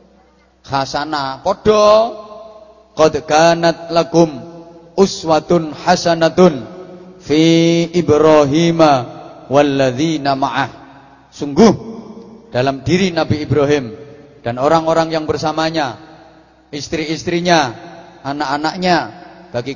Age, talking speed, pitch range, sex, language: 30-49, 65 wpm, 135-170 Hz, male, English